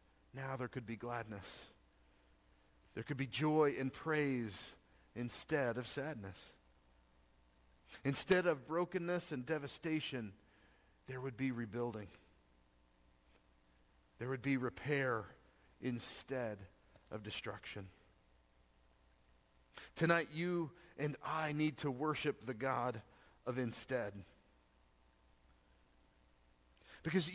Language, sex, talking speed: English, male, 90 wpm